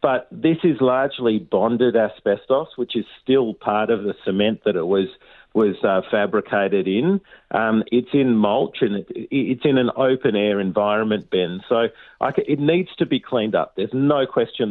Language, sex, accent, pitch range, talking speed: English, male, Australian, 100-125 Hz, 165 wpm